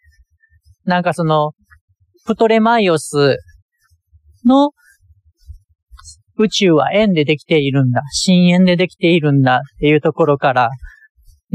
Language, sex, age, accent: Japanese, male, 40-59, native